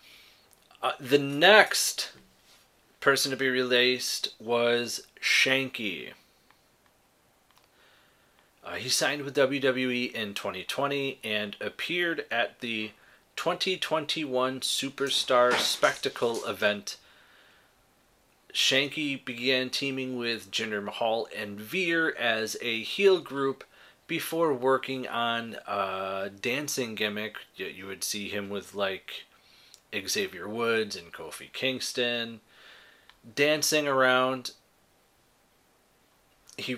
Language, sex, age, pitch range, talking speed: English, male, 30-49, 115-135 Hz, 90 wpm